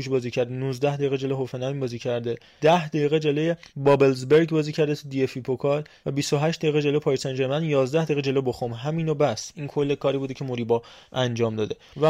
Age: 20-39